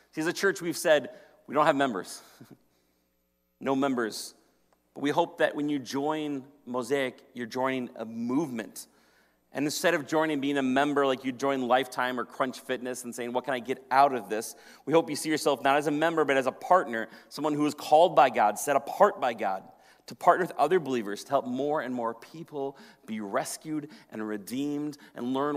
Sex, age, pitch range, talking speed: male, 40-59, 120-150 Hz, 205 wpm